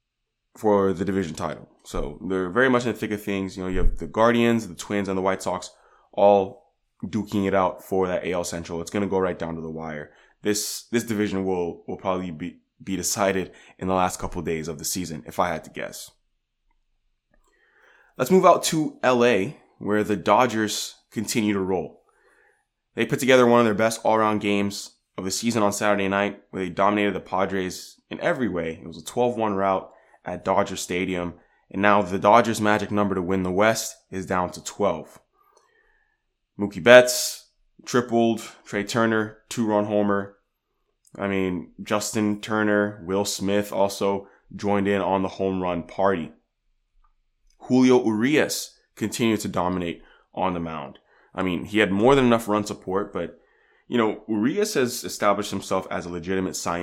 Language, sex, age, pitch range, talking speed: English, male, 20-39, 95-110 Hz, 180 wpm